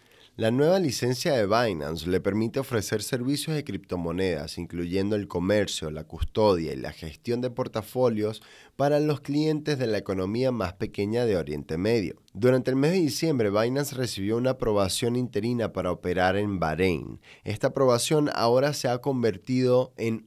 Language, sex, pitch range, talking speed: Spanish, male, 100-130 Hz, 155 wpm